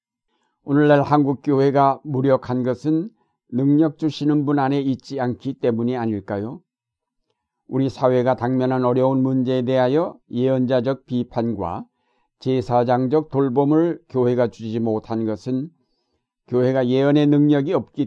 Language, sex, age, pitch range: Korean, male, 60-79, 120-145 Hz